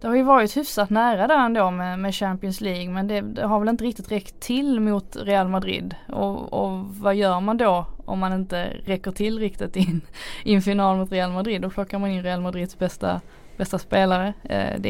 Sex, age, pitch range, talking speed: female, 20-39, 175-200 Hz, 205 wpm